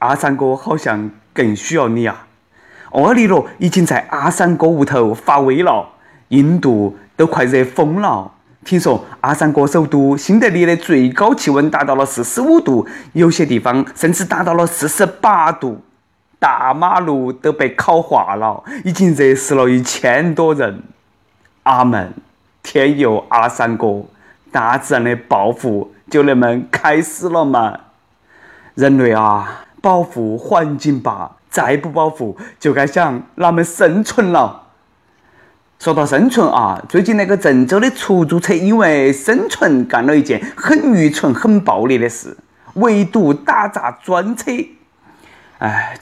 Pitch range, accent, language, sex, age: 130-180 Hz, native, Chinese, male, 20-39